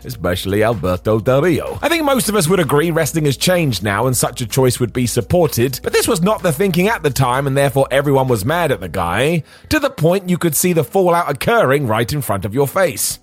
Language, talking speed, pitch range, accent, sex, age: English, 245 wpm, 130-175 Hz, British, male, 30-49